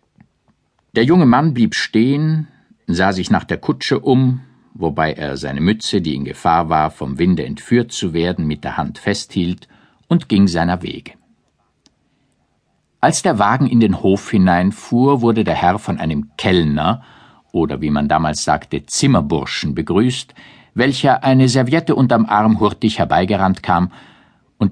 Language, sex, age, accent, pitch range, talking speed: German, male, 50-69, German, 85-120 Hz, 150 wpm